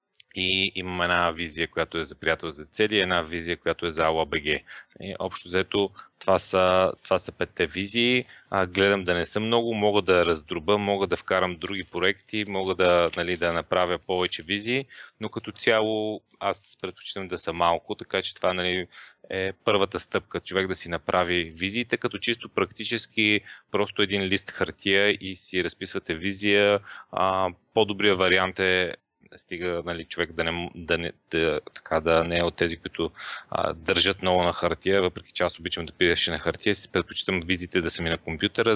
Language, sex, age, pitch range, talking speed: Bulgarian, male, 30-49, 90-100 Hz, 180 wpm